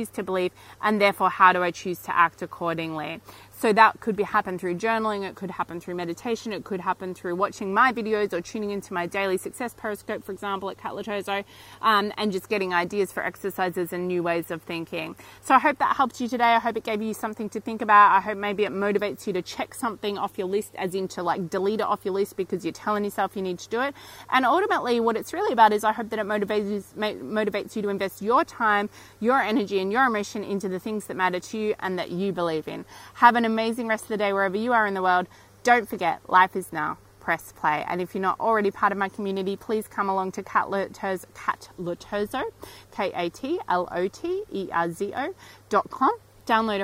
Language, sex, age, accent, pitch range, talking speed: English, female, 30-49, Australian, 185-220 Hz, 215 wpm